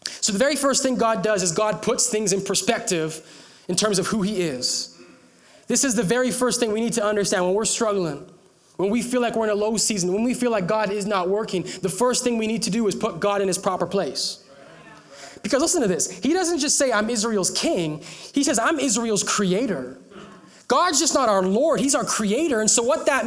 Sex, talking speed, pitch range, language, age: male, 235 wpm, 180-235 Hz, English, 20-39